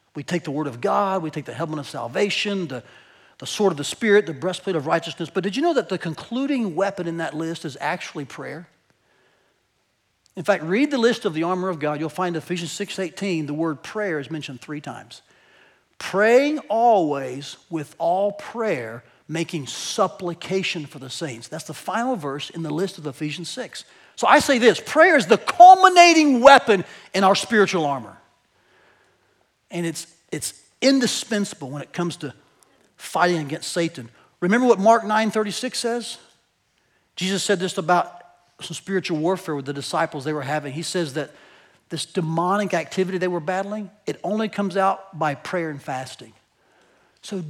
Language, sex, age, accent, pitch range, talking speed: English, male, 40-59, American, 155-205 Hz, 175 wpm